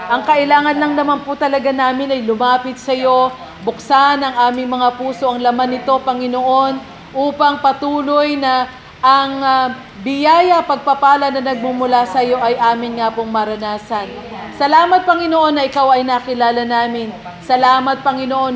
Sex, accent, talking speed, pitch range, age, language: female, native, 145 wpm, 235-280 Hz, 40-59, Filipino